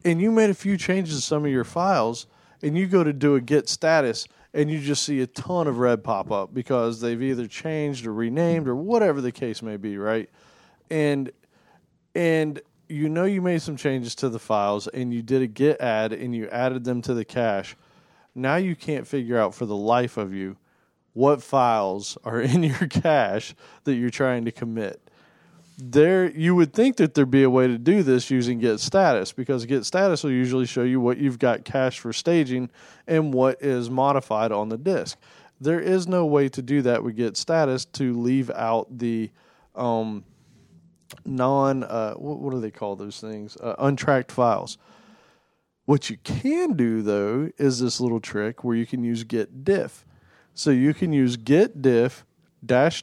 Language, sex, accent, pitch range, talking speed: English, male, American, 115-150 Hz, 195 wpm